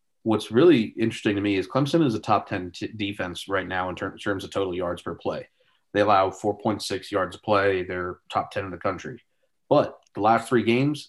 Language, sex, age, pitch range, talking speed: English, male, 30-49, 95-110 Hz, 220 wpm